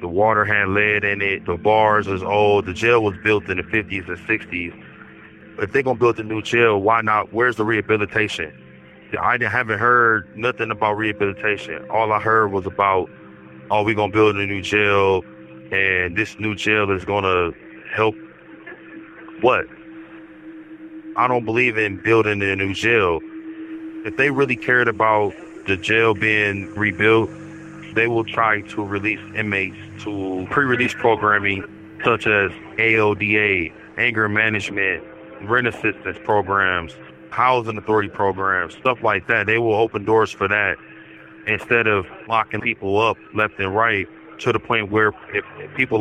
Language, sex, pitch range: English, male, 100-115 Hz